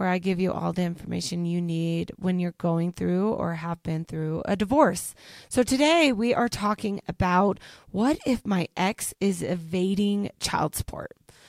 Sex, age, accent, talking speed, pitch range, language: female, 20-39, American, 170 wpm, 180-230 Hz, English